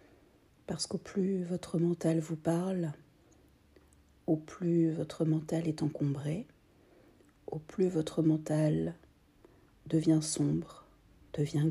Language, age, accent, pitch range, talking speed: French, 40-59, French, 150-175 Hz, 100 wpm